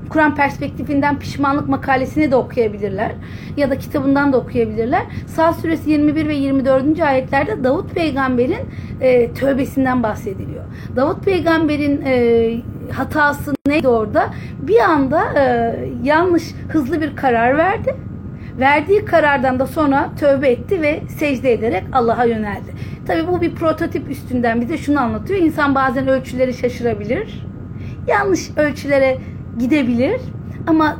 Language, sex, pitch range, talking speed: Turkish, female, 255-310 Hz, 120 wpm